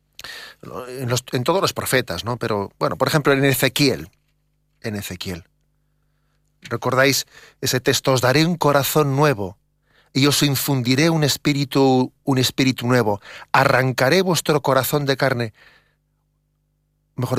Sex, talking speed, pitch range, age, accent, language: male, 120 wpm, 125-145 Hz, 40-59, Spanish, Spanish